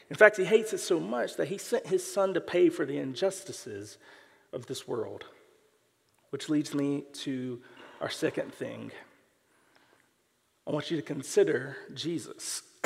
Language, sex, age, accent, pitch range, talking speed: English, male, 40-59, American, 135-185 Hz, 155 wpm